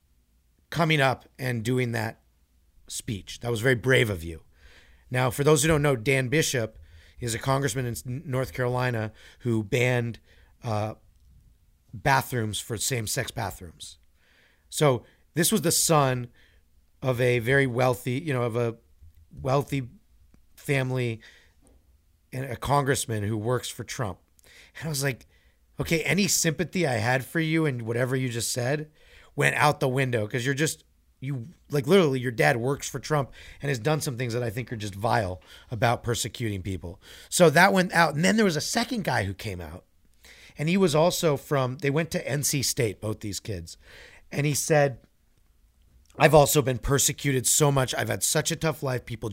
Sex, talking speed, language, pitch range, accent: male, 175 wpm, English, 105-145 Hz, American